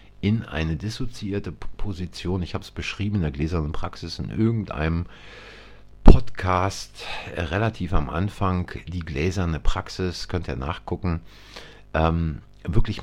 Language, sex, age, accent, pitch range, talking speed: German, male, 50-69, German, 85-110 Hz, 120 wpm